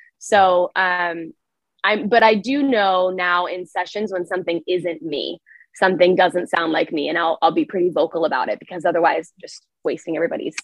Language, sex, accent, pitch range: English, female, American, 180-220 Hz